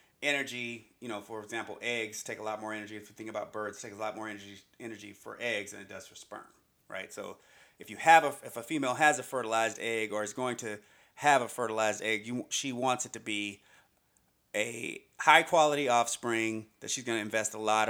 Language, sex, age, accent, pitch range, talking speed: English, male, 30-49, American, 105-140 Hz, 220 wpm